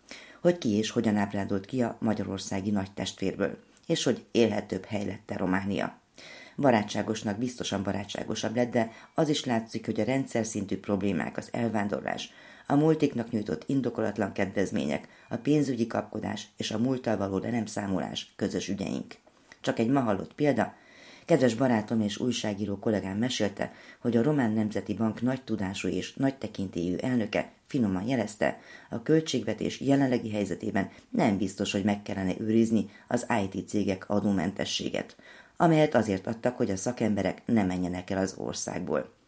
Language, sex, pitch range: Hungarian, female, 100-120 Hz